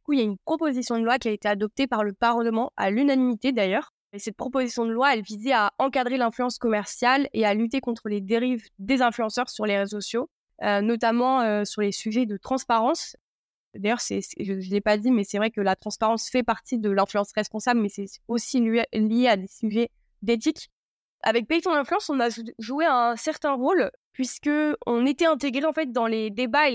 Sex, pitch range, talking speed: female, 215-260 Hz, 215 wpm